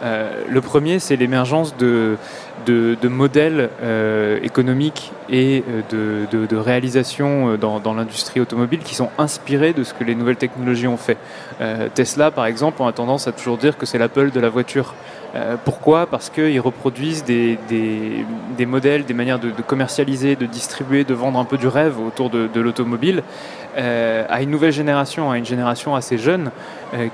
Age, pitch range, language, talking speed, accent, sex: 20-39, 120-145 Hz, French, 175 wpm, French, male